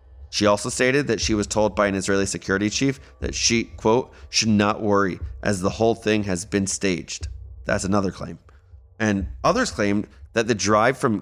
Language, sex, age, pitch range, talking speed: English, male, 30-49, 100-135 Hz, 185 wpm